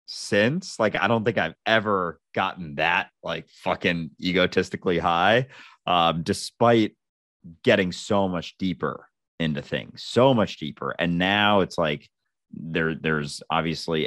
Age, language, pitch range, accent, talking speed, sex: 30-49, English, 75-95 Hz, American, 130 wpm, male